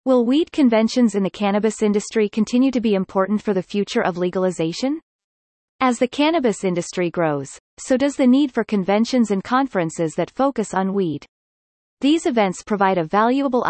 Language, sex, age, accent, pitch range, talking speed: English, female, 30-49, American, 180-245 Hz, 165 wpm